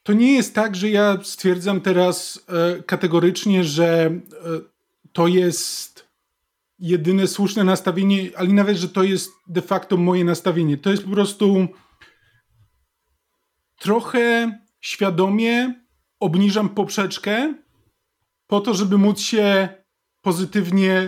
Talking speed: 110 wpm